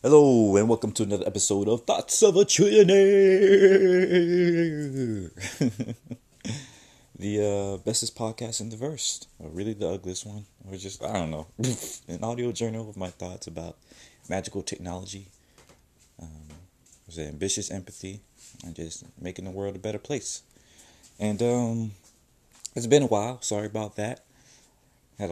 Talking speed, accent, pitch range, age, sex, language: 140 wpm, American, 85-110 Hz, 30-49, male, English